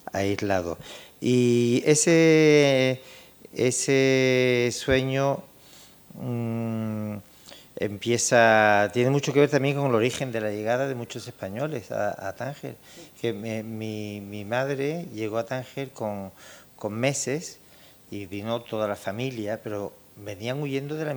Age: 50-69